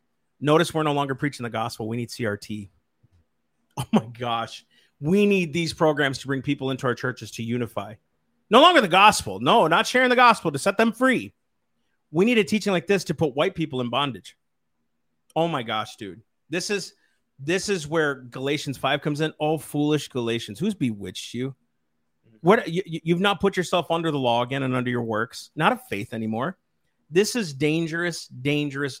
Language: English